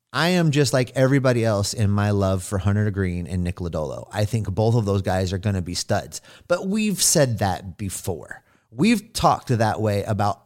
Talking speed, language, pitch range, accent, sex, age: 205 wpm, English, 95-125 Hz, American, male, 30-49